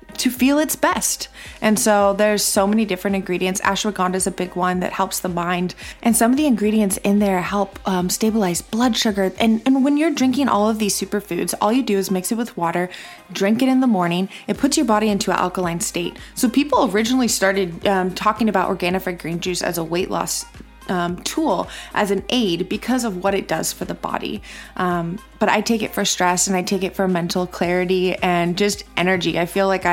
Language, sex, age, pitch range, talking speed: English, female, 20-39, 180-215 Hz, 220 wpm